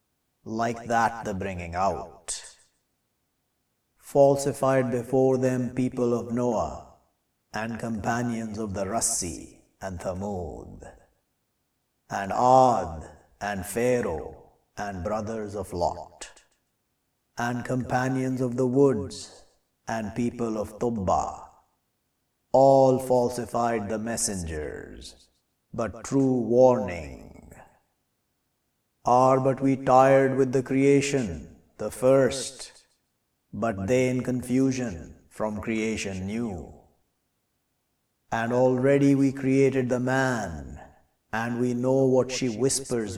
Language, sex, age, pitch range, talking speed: English, male, 50-69, 105-130 Hz, 95 wpm